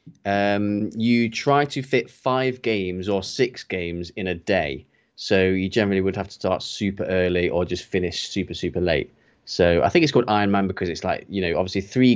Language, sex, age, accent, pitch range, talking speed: English, male, 20-39, British, 90-105 Hz, 205 wpm